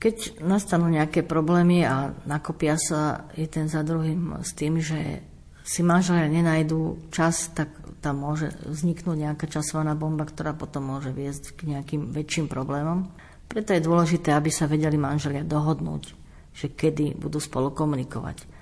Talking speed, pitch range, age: 150 wpm, 145-165 Hz, 50-69